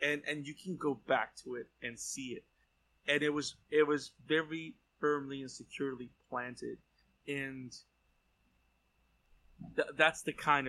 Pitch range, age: 115-150 Hz, 20-39